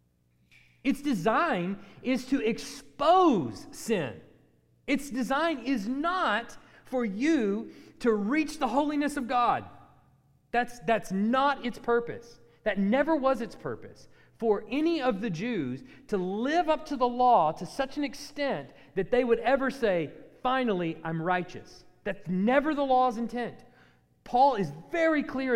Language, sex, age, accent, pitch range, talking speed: English, male, 40-59, American, 180-270 Hz, 140 wpm